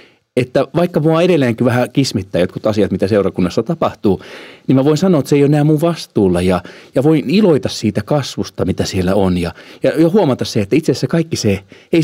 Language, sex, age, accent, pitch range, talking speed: Finnish, male, 40-59, native, 100-155 Hz, 205 wpm